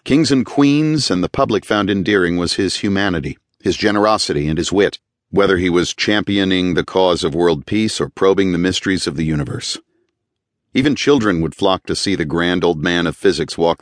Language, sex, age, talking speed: English, male, 50-69, 195 wpm